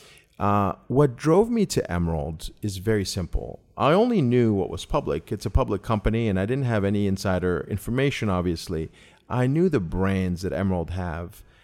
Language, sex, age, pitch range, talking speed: English, male, 40-59, 95-135 Hz, 175 wpm